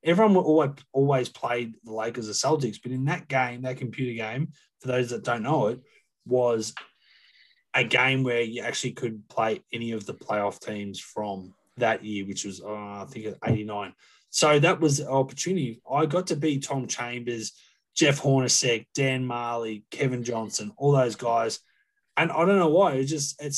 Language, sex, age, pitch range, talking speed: English, male, 20-39, 120-140 Hz, 185 wpm